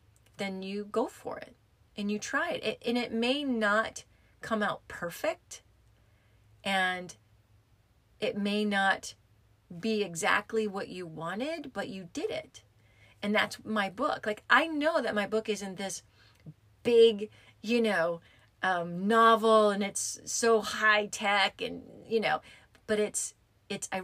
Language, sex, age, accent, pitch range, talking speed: English, female, 30-49, American, 170-220 Hz, 145 wpm